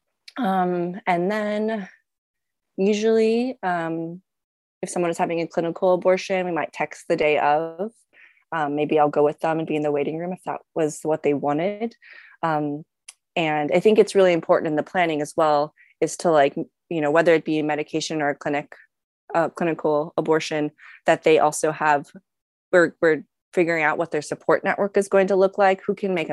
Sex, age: female, 20-39